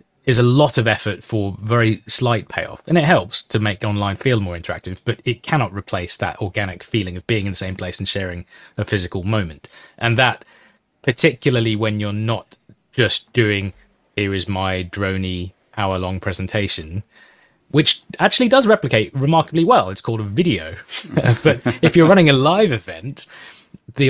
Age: 20-39